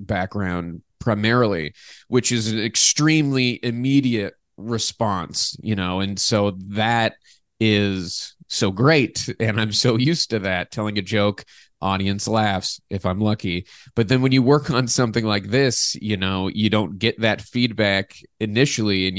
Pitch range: 100-120 Hz